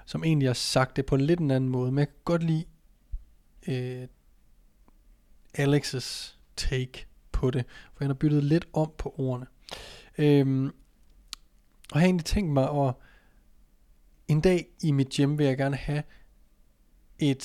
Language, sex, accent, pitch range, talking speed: Danish, male, native, 130-150 Hz, 160 wpm